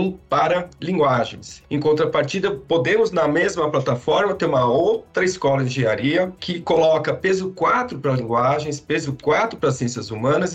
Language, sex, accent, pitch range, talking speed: Portuguese, male, Brazilian, 130-170 Hz, 140 wpm